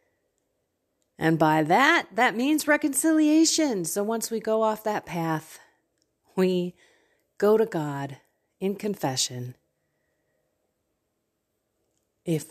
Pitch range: 155-225 Hz